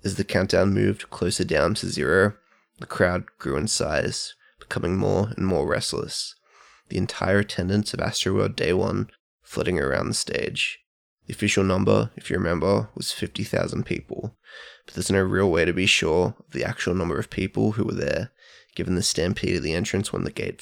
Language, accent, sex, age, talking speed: English, Australian, male, 20-39, 185 wpm